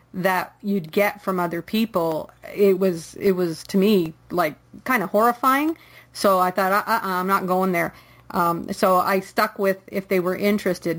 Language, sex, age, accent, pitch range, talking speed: English, female, 40-59, American, 190-220 Hz, 180 wpm